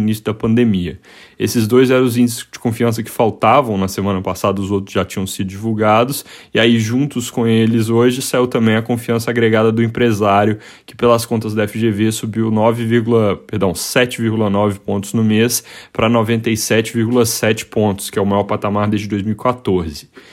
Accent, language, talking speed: Brazilian, Portuguese, 160 wpm